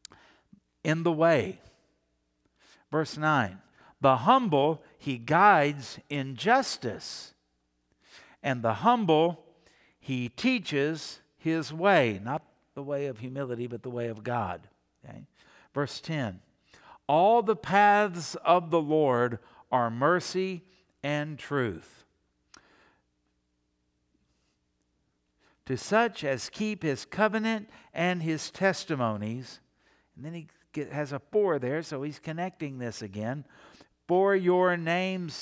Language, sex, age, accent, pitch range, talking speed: English, male, 60-79, American, 125-180 Hz, 110 wpm